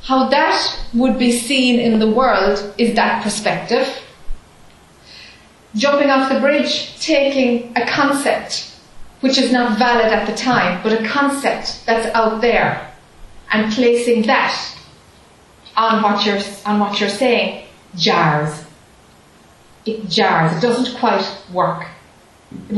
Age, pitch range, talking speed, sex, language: 40-59, 210-255 Hz, 125 wpm, female, English